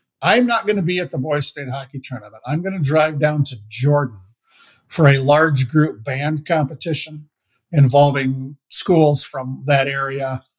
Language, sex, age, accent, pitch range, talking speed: English, male, 50-69, American, 140-160 Hz, 165 wpm